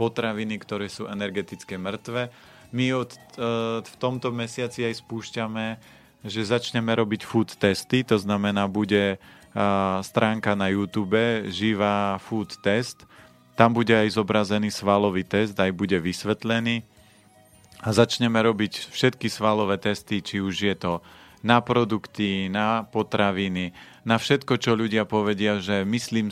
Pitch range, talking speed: 100-115 Hz, 130 wpm